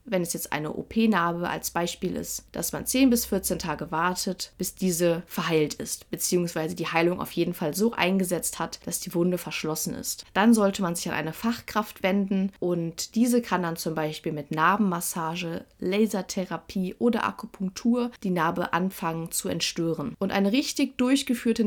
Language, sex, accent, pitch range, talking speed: German, female, German, 175-225 Hz, 170 wpm